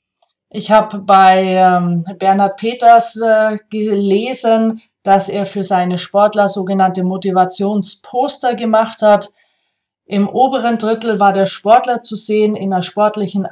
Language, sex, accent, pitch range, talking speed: German, female, German, 190-220 Hz, 125 wpm